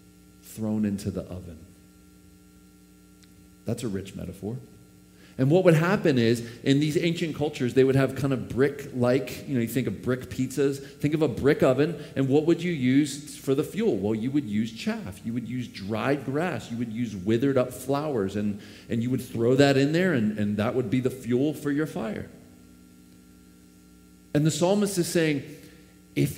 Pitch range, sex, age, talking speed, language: 95-140 Hz, male, 40-59, 190 wpm, English